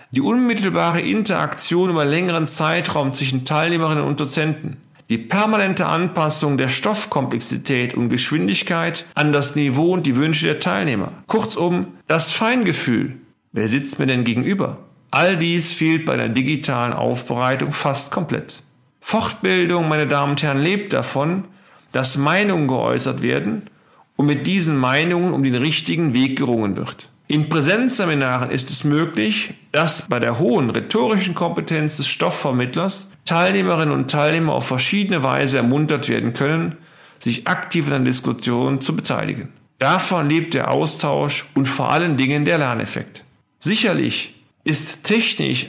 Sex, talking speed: male, 140 wpm